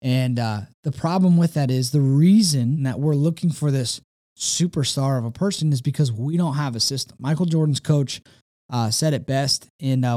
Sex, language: male, English